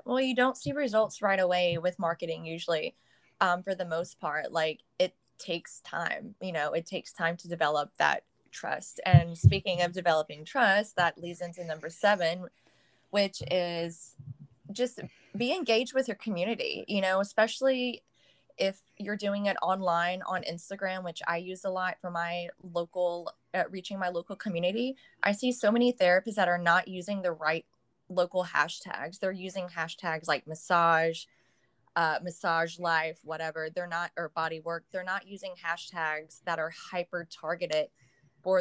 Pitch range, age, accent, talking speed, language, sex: 165-190 Hz, 20-39, American, 165 wpm, English, female